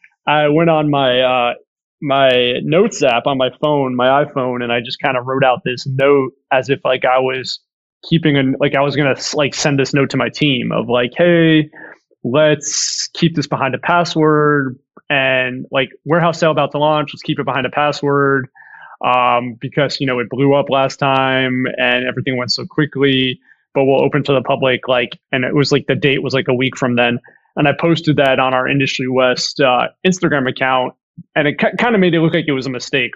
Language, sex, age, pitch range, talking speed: English, male, 20-39, 130-145 Hz, 215 wpm